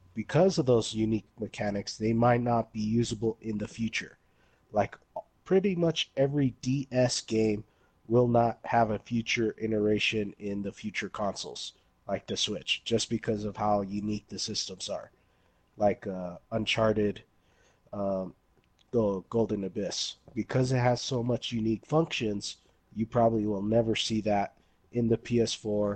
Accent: American